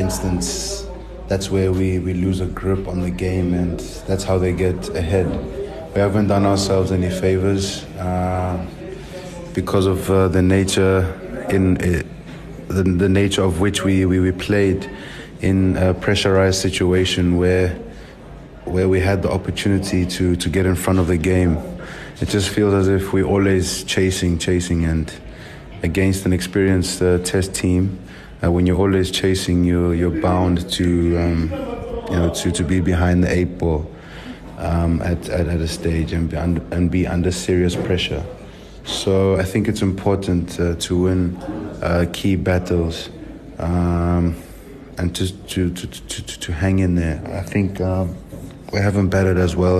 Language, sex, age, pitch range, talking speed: English, male, 20-39, 90-95 Hz, 165 wpm